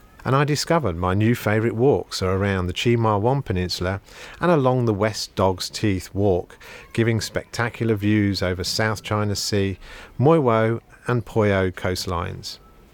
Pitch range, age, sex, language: 95-120 Hz, 40-59, male, English